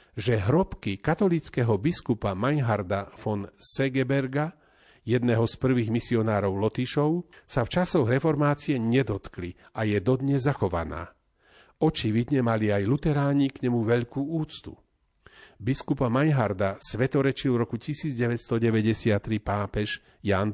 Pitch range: 105-140 Hz